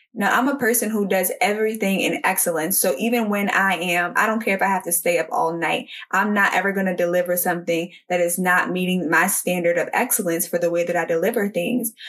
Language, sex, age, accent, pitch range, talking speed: English, female, 10-29, American, 180-220 Hz, 235 wpm